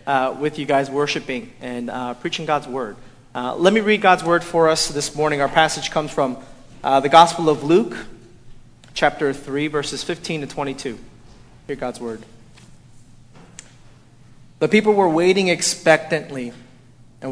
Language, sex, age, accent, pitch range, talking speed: English, male, 30-49, American, 130-165 Hz, 150 wpm